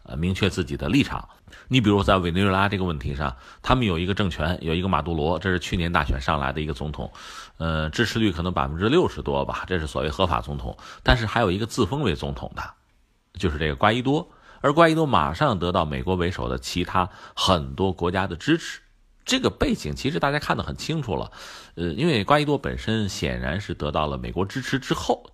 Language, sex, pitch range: Chinese, male, 75-105 Hz